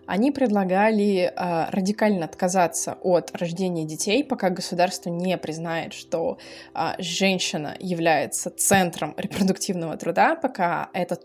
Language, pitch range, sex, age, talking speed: Russian, 175-210 Hz, female, 20-39, 110 wpm